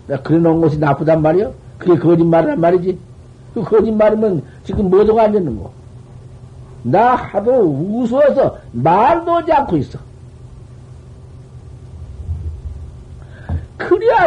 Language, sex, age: Korean, male, 60-79